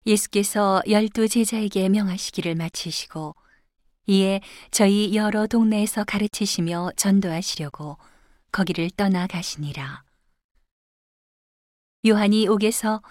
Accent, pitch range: native, 165-210 Hz